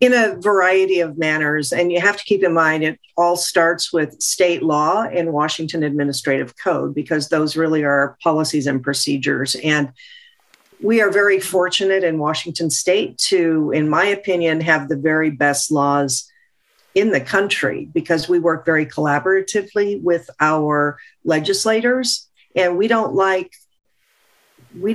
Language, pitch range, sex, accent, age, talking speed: English, 150-195 Hz, female, American, 50-69, 150 wpm